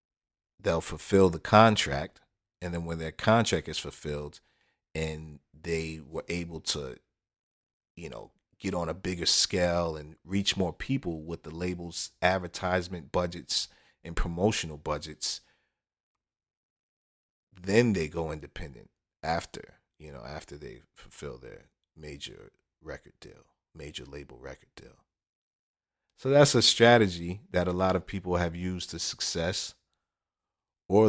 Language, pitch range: English, 80-95 Hz